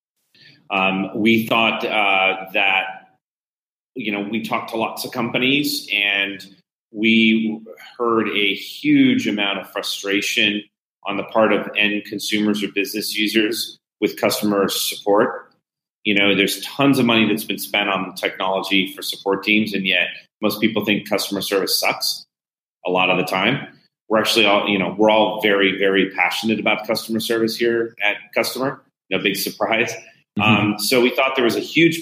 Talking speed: 165 wpm